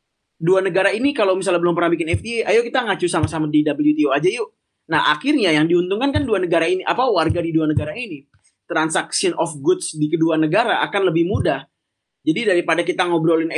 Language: Indonesian